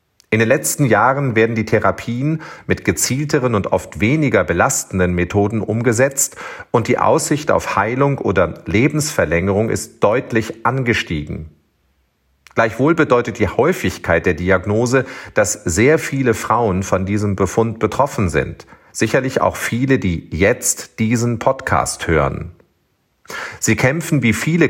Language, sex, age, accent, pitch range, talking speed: German, male, 40-59, German, 105-130 Hz, 125 wpm